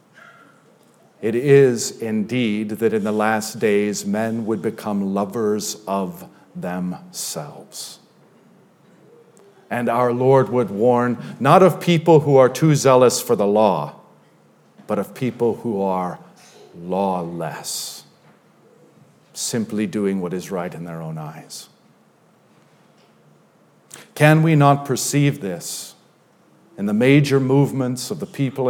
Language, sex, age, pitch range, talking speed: English, male, 50-69, 110-145 Hz, 115 wpm